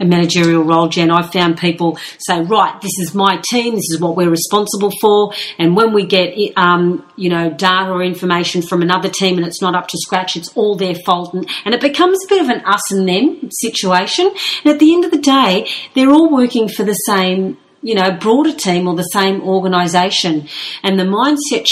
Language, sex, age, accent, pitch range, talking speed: English, female, 40-59, Australian, 170-200 Hz, 215 wpm